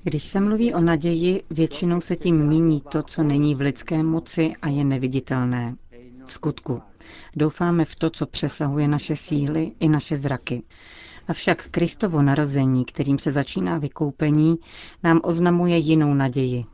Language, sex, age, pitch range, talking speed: Czech, female, 40-59, 135-160 Hz, 145 wpm